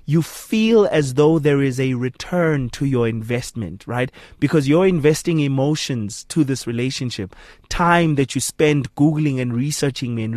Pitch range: 130-160 Hz